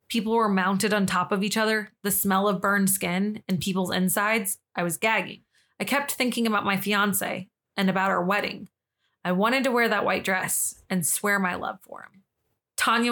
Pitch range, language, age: 185-225 Hz, English, 20-39